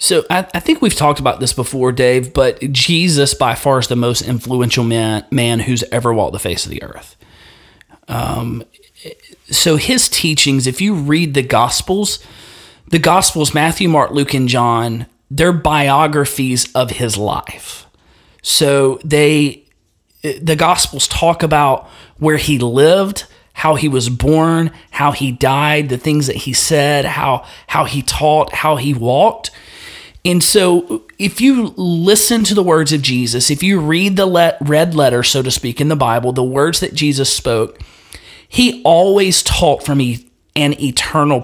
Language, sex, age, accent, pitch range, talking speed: English, male, 30-49, American, 130-175 Hz, 160 wpm